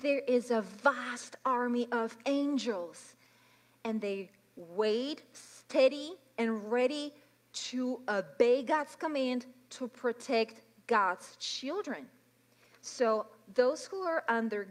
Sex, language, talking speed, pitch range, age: female, English, 105 wpm, 210-290 Hz, 40-59